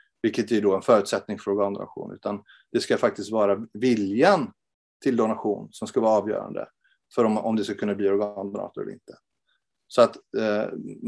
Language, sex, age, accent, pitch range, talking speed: Swedish, male, 30-49, native, 105-130 Hz, 175 wpm